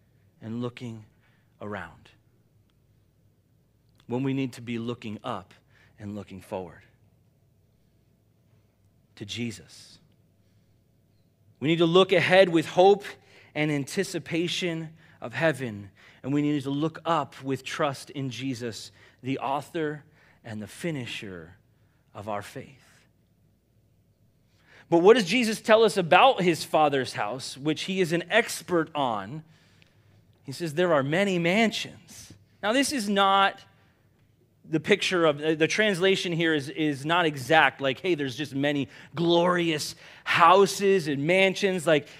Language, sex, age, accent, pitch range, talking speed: English, male, 40-59, American, 115-175 Hz, 130 wpm